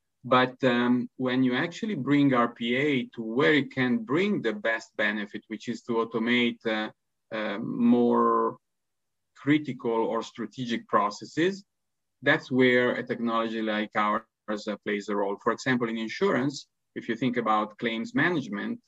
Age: 30-49